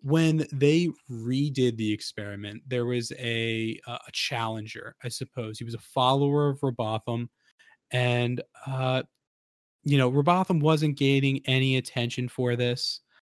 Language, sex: English, male